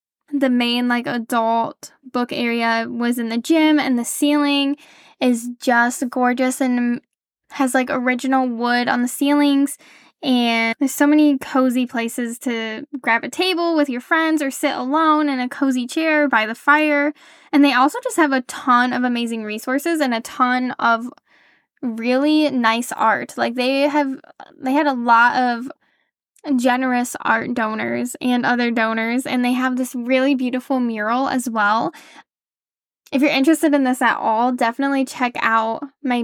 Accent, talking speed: American, 160 wpm